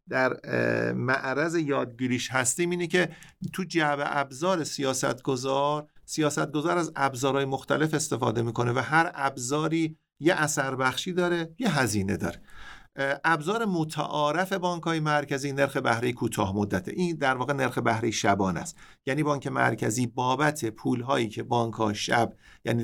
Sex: male